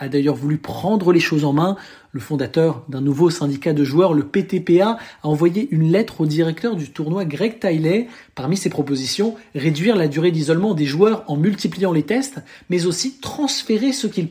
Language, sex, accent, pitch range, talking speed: French, male, French, 150-210 Hz, 190 wpm